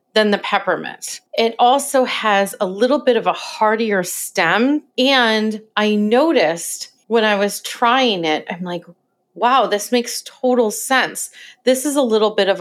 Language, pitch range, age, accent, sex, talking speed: English, 195-245 Hz, 30-49, American, female, 160 wpm